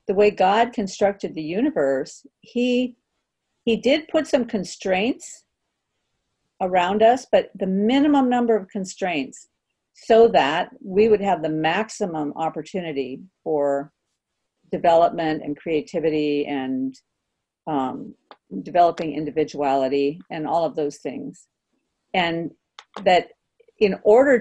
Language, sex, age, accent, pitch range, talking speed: English, female, 50-69, American, 160-230 Hz, 110 wpm